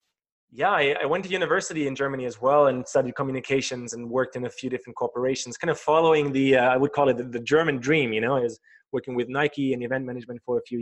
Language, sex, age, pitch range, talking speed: English, male, 20-39, 120-145 Hz, 255 wpm